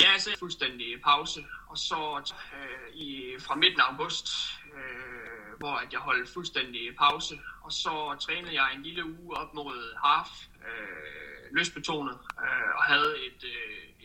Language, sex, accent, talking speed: Danish, male, native, 160 wpm